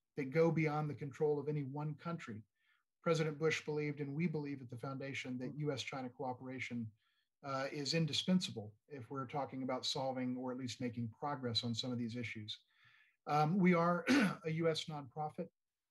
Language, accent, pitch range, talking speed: English, American, 130-155 Hz, 170 wpm